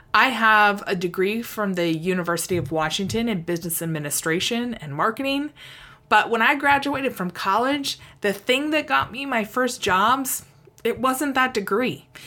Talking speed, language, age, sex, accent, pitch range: 155 wpm, English, 20-39, female, American, 165-230 Hz